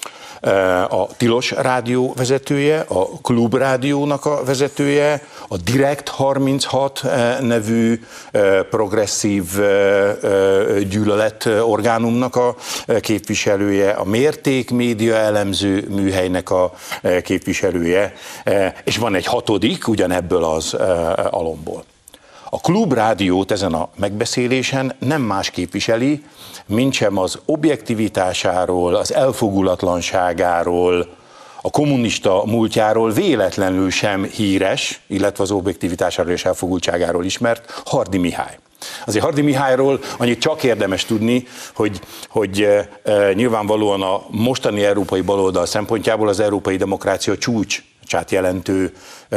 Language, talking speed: Hungarian, 100 wpm